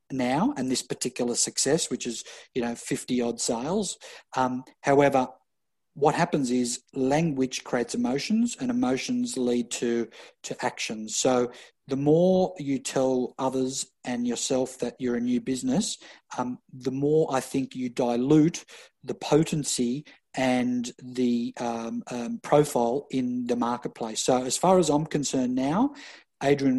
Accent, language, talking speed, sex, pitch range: Australian, English, 145 wpm, male, 125-140 Hz